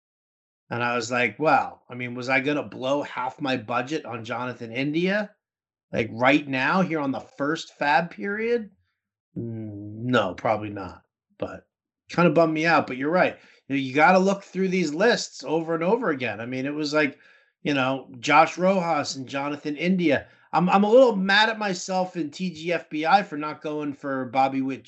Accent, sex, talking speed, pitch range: American, male, 190 wpm, 130-175 Hz